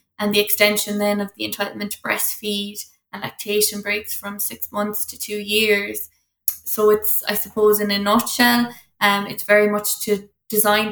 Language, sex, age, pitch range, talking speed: English, female, 20-39, 205-210 Hz, 170 wpm